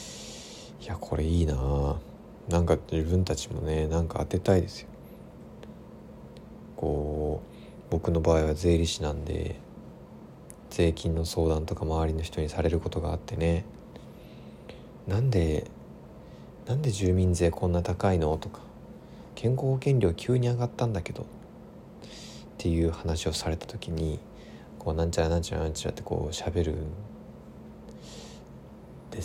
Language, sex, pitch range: Japanese, male, 80-105 Hz